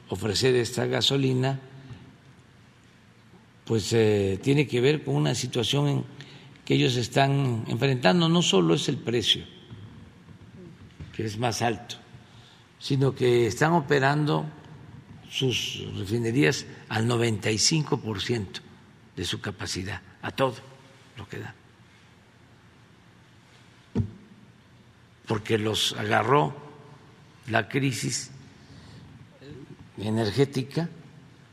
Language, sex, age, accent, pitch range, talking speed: Spanish, male, 60-79, Mexican, 110-140 Hz, 90 wpm